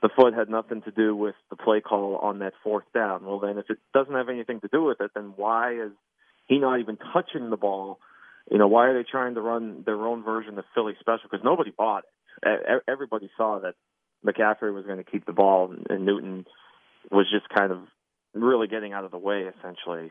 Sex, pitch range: male, 95-115 Hz